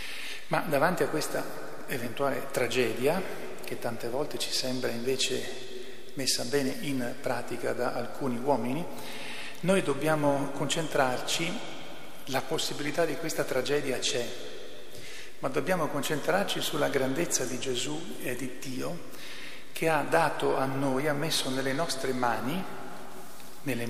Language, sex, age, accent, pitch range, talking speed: Italian, male, 50-69, native, 125-150 Hz, 125 wpm